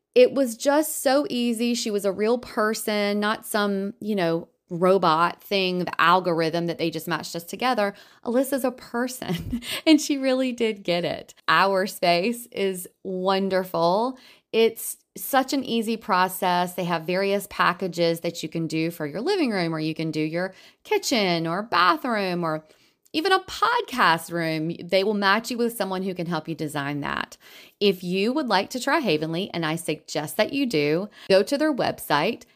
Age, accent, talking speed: 30-49, American, 175 wpm